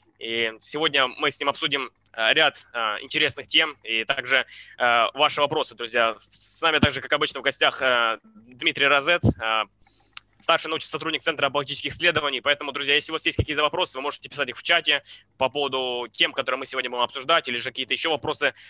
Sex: male